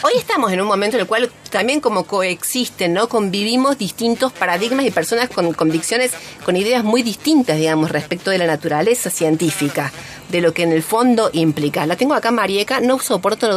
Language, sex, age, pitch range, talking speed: Spanish, female, 40-59, 165-230 Hz, 185 wpm